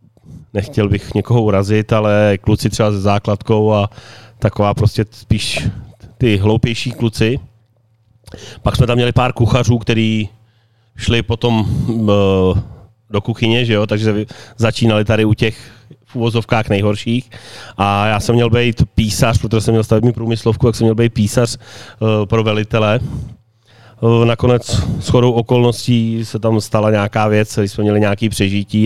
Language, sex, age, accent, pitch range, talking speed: Czech, male, 30-49, native, 105-115 Hz, 140 wpm